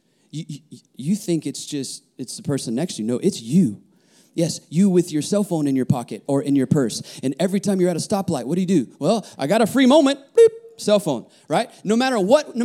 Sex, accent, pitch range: male, American, 175-290 Hz